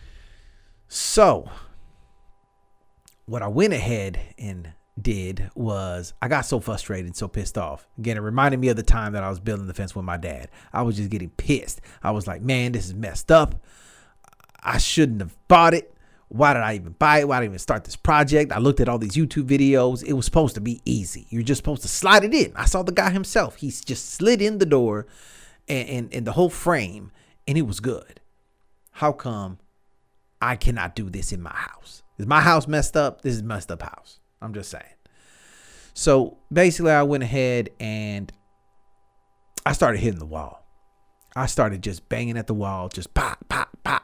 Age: 30-49